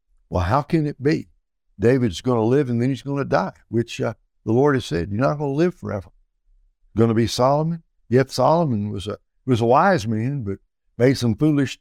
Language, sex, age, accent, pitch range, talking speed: English, male, 60-79, American, 95-130 Hz, 220 wpm